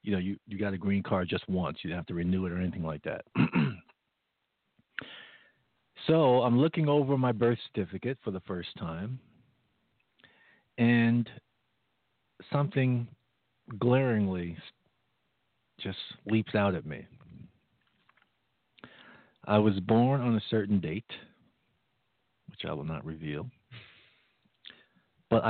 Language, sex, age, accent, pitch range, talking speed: English, male, 50-69, American, 100-130 Hz, 120 wpm